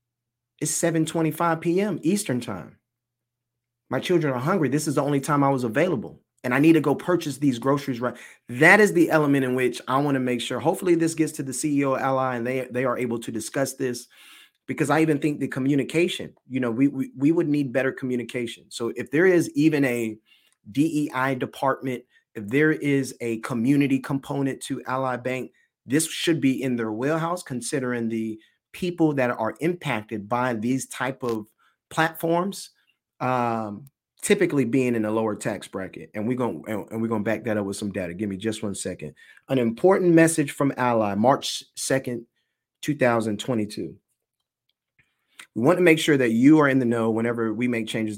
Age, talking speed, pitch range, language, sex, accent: 30-49, 190 wpm, 115-150 Hz, English, male, American